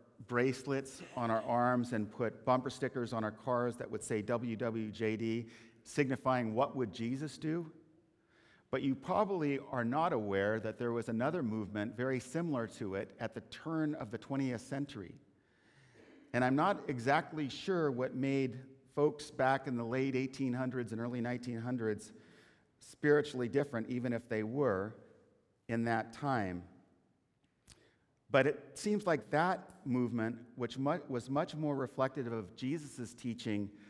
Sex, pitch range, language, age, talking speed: male, 115-145 Hz, English, 50-69, 145 wpm